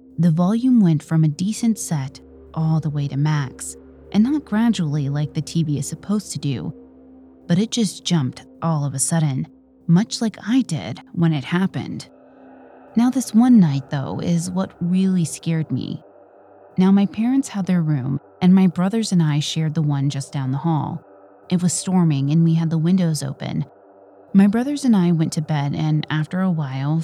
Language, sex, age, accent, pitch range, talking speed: English, female, 30-49, American, 140-180 Hz, 190 wpm